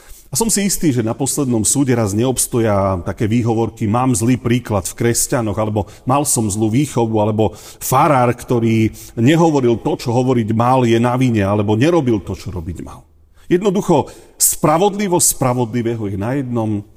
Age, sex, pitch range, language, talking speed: 40-59, male, 105-145 Hz, Slovak, 160 wpm